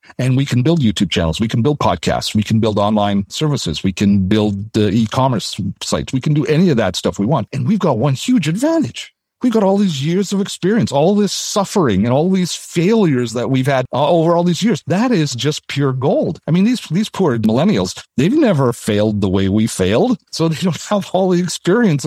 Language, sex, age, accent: English, male, 50-69, American